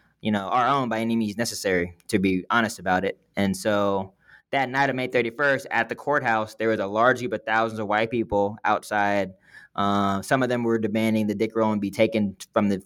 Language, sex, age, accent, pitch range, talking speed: English, male, 20-39, American, 110-130 Hz, 220 wpm